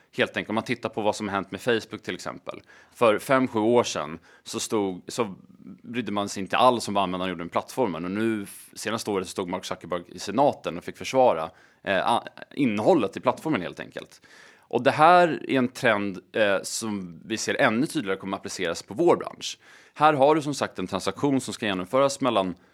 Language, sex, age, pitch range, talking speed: Swedish, male, 30-49, 95-130 Hz, 215 wpm